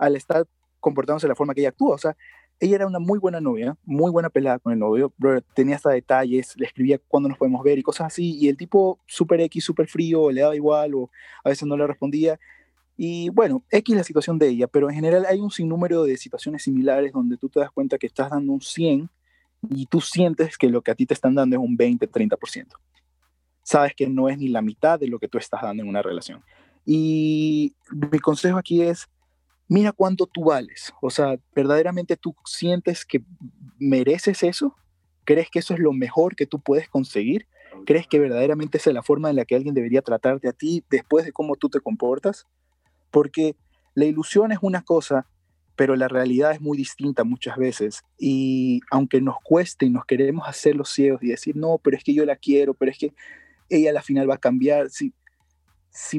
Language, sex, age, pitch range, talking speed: Spanish, male, 20-39, 130-165 Hz, 215 wpm